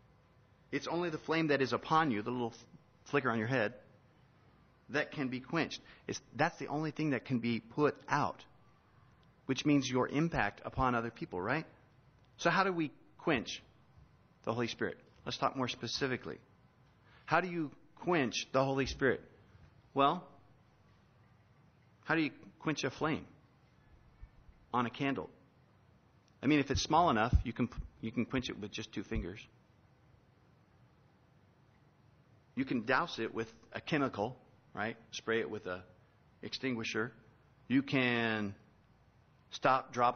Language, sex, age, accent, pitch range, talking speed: English, male, 40-59, American, 115-140 Hz, 145 wpm